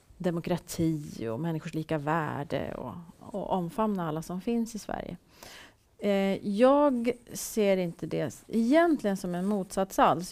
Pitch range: 170-210 Hz